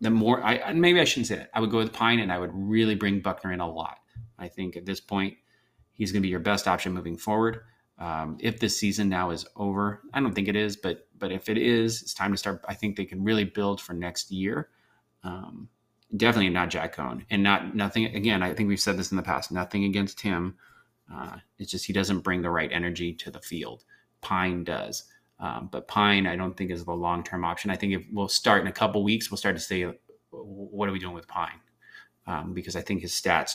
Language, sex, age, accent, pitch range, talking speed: English, male, 30-49, American, 90-110 Hz, 240 wpm